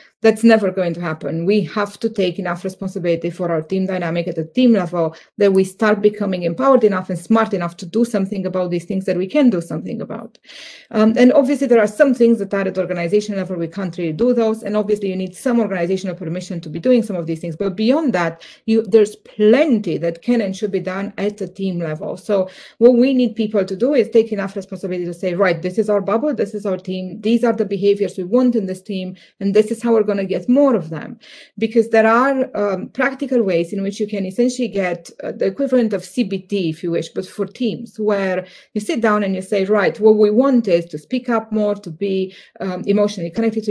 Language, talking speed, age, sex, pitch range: English, 240 wpm, 30-49, female, 180-225 Hz